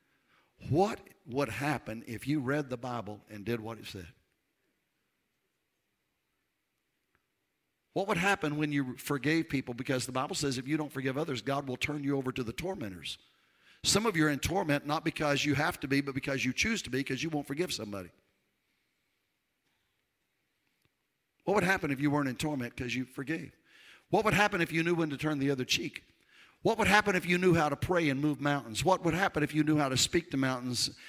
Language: English